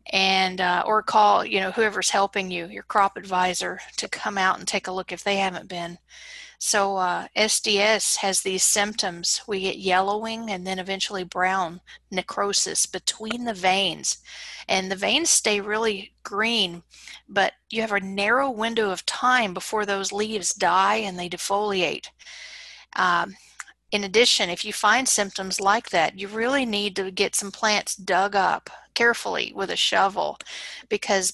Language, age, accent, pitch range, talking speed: English, 40-59, American, 190-225 Hz, 160 wpm